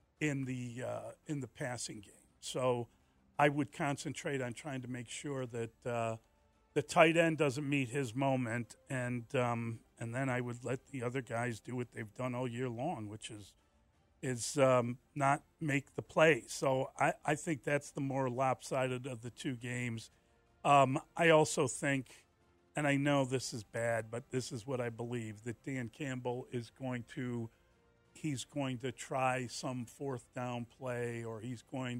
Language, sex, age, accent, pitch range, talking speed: English, male, 40-59, American, 115-135 Hz, 180 wpm